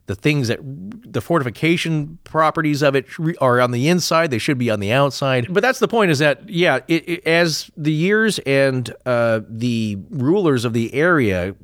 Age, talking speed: 40-59, 180 wpm